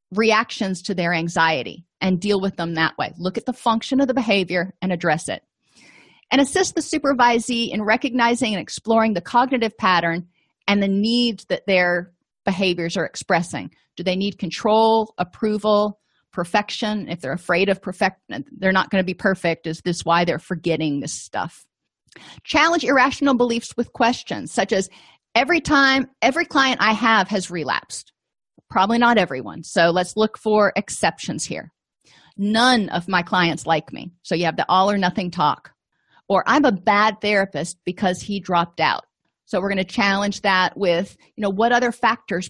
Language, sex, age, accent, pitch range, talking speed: English, female, 30-49, American, 180-230 Hz, 170 wpm